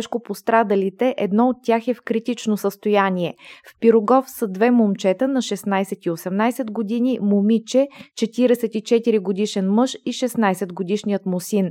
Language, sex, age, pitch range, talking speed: Bulgarian, female, 20-39, 200-240 Hz, 130 wpm